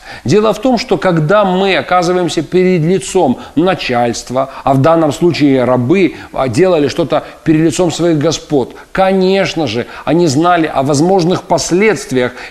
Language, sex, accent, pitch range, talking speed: Russian, male, native, 145-195 Hz, 135 wpm